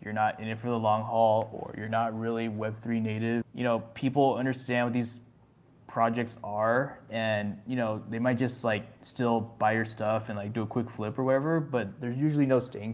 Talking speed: 215 wpm